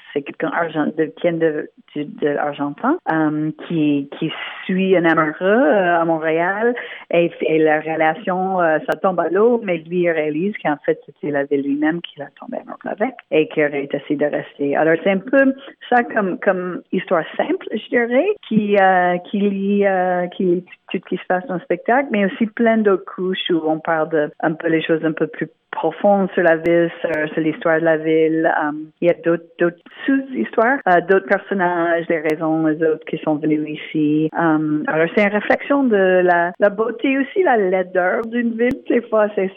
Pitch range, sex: 160-210 Hz, female